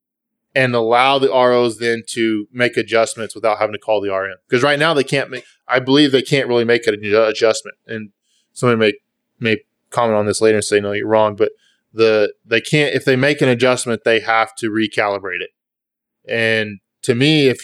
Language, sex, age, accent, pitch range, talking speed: English, male, 20-39, American, 105-130 Hz, 205 wpm